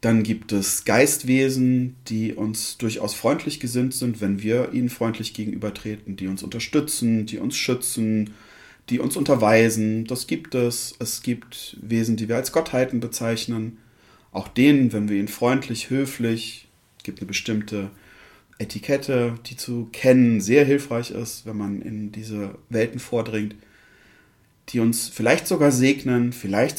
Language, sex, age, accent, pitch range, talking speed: German, male, 30-49, German, 110-135 Hz, 145 wpm